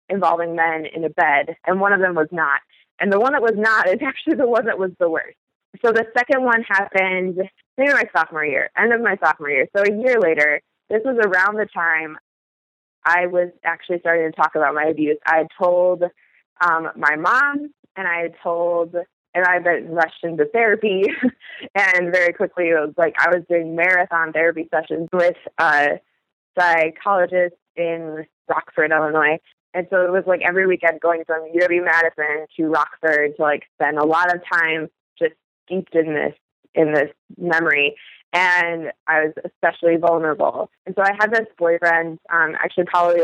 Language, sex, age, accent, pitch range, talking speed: English, female, 20-39, American, 160-190 Hz, 185 wpm